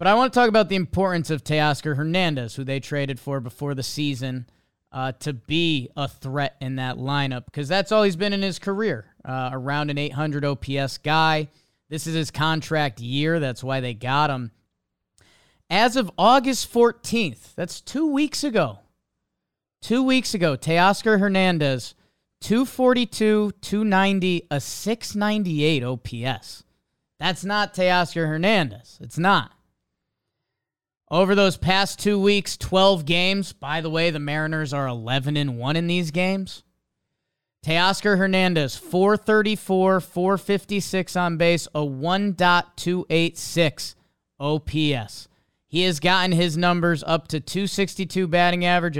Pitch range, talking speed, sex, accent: 140-190 Hz, 135 wpm, male, American